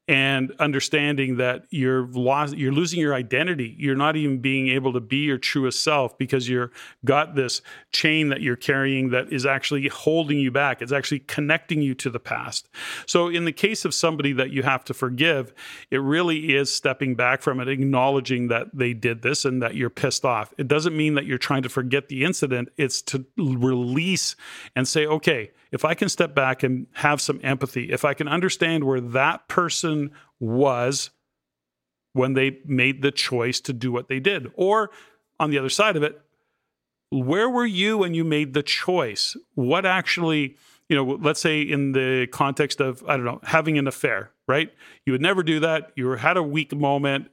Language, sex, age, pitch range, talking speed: English, male, 40-59, 130-150 Hz, 195 wpm